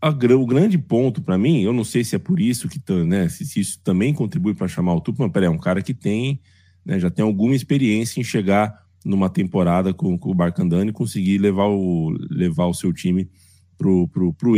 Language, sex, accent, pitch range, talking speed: Portuguese, male, Brazilian, 90-125 Hz, 220 wpm